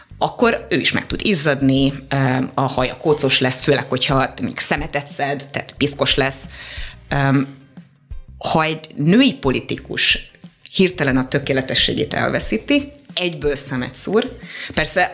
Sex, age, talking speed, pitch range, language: female, 30-49, 125 wpm, 135-170 Hz, Hungarian